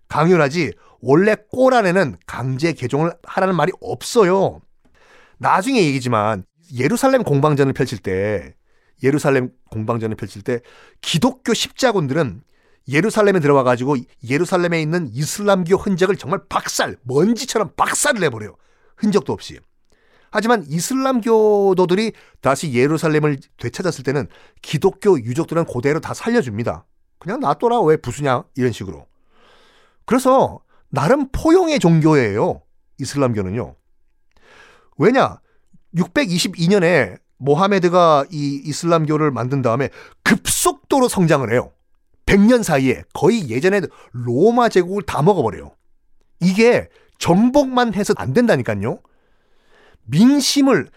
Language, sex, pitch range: Korean, male, 135-210 Hz